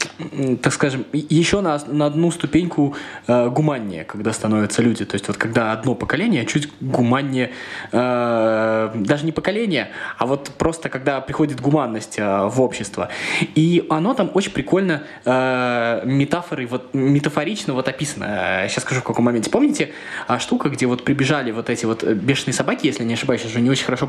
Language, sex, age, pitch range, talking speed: Russian, male, 20-39, 125-165 Hz, 170 wpm